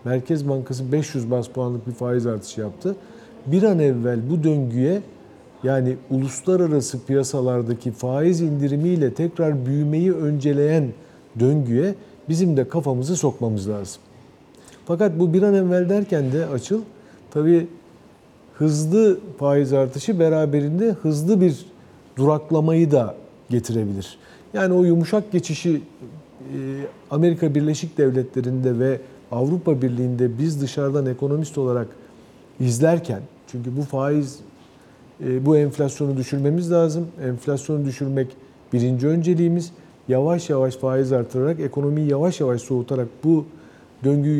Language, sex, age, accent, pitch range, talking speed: Turkish, male, 50-69, native, 130-165 Hz, 110 wpm